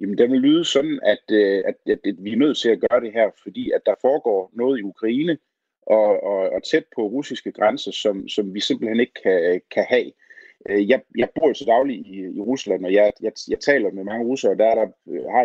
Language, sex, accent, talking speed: Danish, male, native, 235 wpm